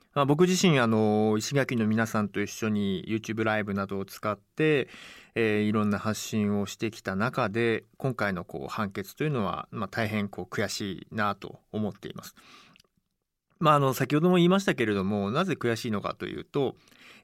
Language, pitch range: Japanese, 110-155 Hz